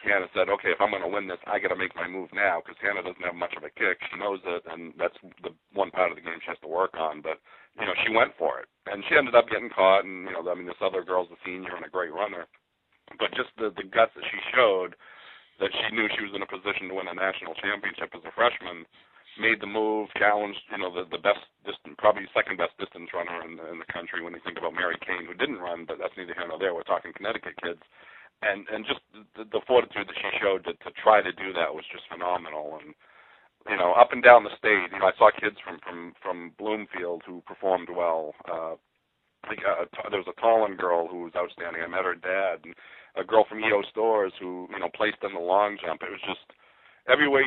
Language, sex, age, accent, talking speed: English, male, 50-69, American, 255 wpm